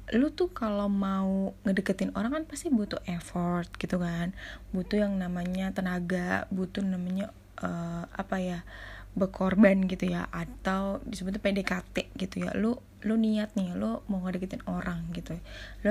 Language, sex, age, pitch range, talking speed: Indonesian, female, 10-29, 185-225 Hz, 145 wpm